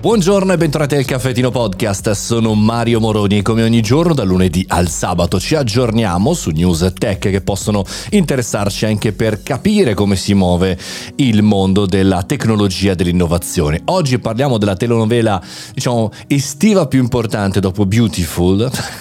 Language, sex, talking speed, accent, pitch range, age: Italian, male, 150 wpm, native, 95-120 Hz, 30-49